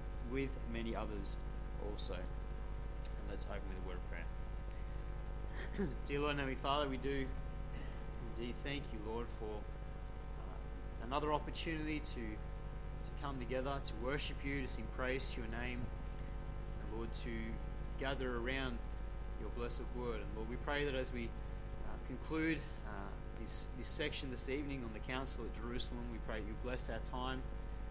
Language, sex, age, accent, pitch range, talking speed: English, male, 20-39, Australian, 110-140 Hz, 160 wpm